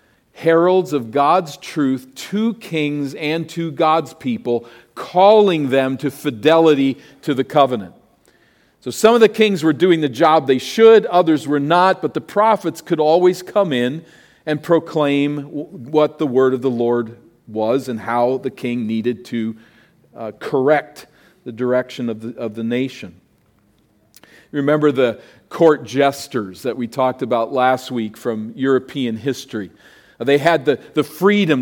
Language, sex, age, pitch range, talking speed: English, male, 40-59, 125-175 Hz, 150 wpm